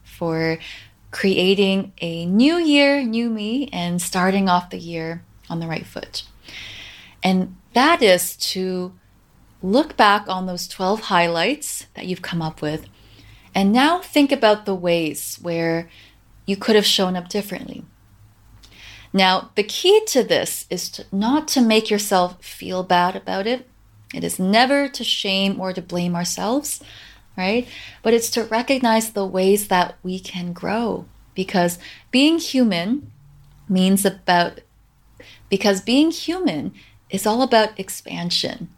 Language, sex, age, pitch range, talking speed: English, female, 20-39, 175-220 Hz, 140 wpm